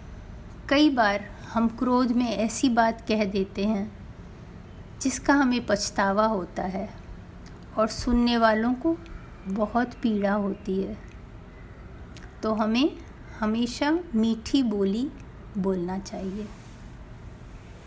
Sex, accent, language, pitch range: female, native, Hindi, 210-275 Hz